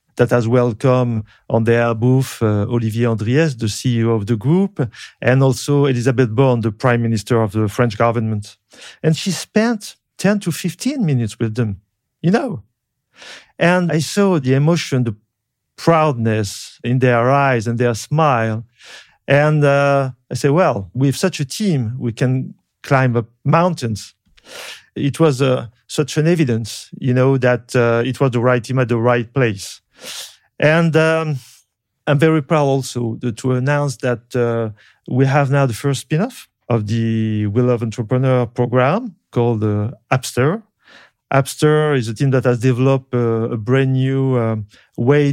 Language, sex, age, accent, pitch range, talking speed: French, male, 40-59, French, 115-145 Hz, 160 wpm